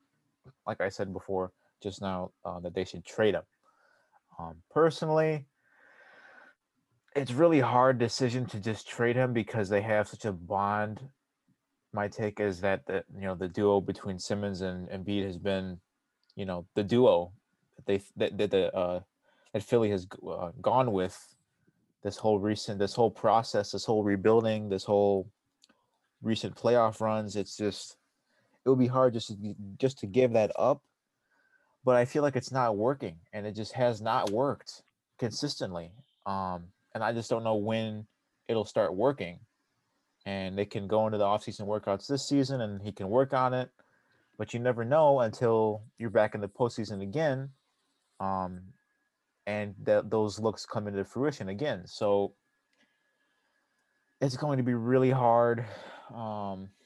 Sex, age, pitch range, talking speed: male, 20-39, 100-120 Hz, 165 wpm